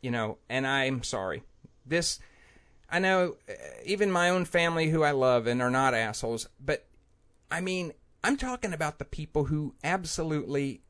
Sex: male